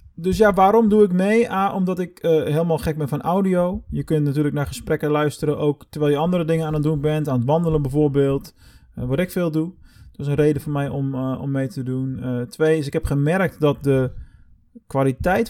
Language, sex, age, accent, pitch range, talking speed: Dutch, male, 20-39, Dutch, 135-175 Hz, 230 wpm